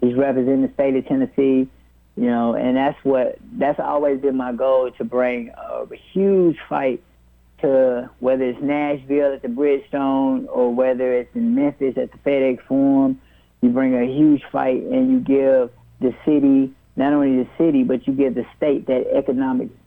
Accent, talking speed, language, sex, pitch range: American, 175 wpm, English, male, 125-145 Hz